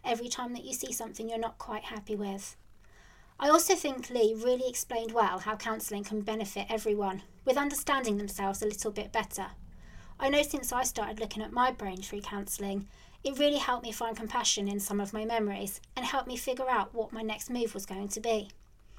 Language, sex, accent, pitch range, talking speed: English, female, British, 205-250 Hz, 205 wpm